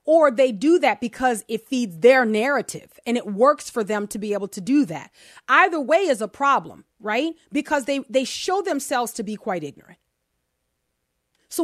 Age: 30-49